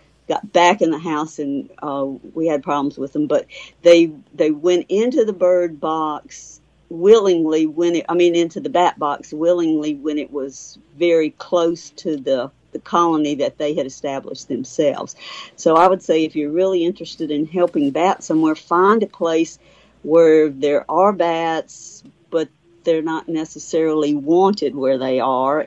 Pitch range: 150-180 Hz